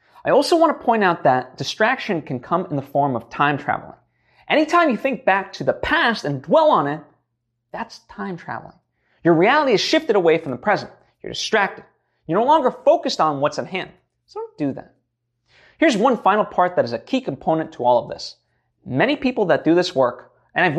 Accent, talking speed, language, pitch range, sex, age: American, 210 wpm, English, 140-230 Hz, male, 20-39